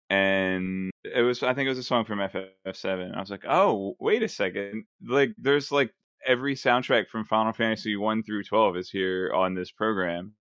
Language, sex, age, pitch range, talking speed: English, male, 20-39, 95-110 Hz, 195 wpm